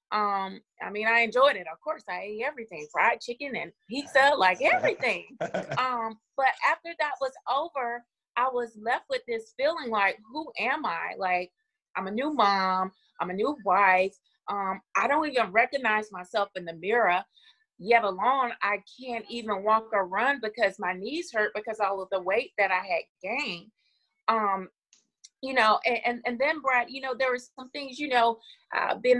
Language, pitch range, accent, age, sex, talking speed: English, 200-250 Hz, American, 30-49, female, 185 wpm